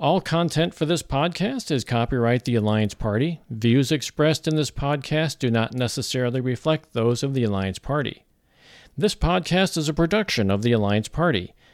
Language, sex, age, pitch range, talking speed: English, male, 50-69, 115-155 Hz, 170 wpm